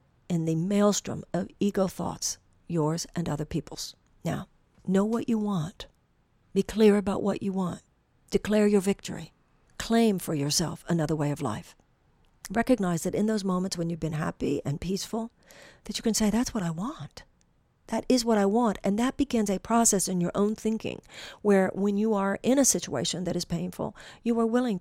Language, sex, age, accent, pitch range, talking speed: English, female, 50-69, American, 180-220 Hz, 185 wpm